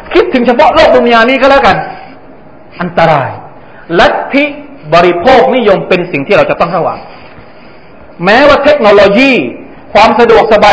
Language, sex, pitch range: Thai, male, 150-215 Hz